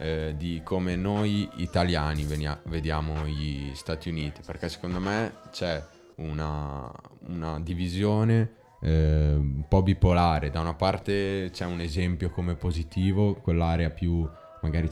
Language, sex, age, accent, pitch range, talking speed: Italian, male, 20-39, native, 75-85 Hz, 120 wpm